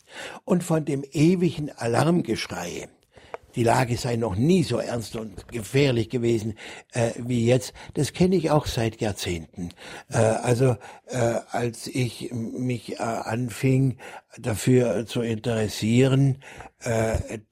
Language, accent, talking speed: German, German, 125 wpm